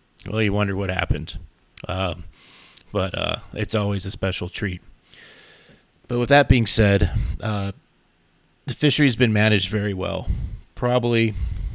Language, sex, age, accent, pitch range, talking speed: English, male, 30-49, American, 90-110 Hz, 140 wpm